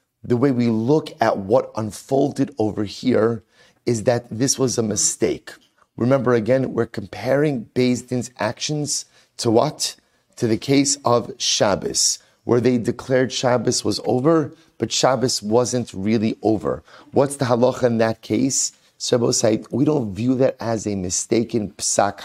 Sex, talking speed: male, 150 wpm